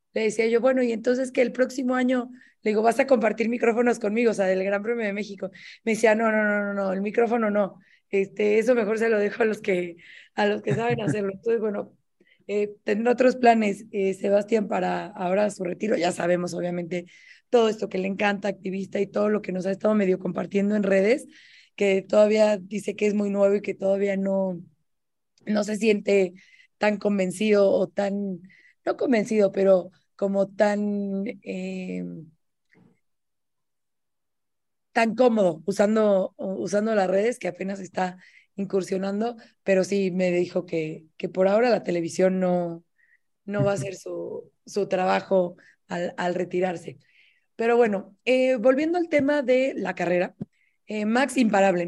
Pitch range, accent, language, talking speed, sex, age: 185-225 Hz, Mexican, Spanish, 170 wpm, female, 20-39